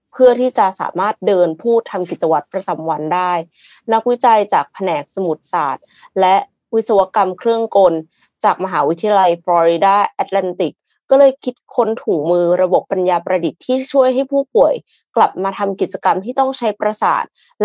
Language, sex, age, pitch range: Thai, female, 20-39, 180-250 Hz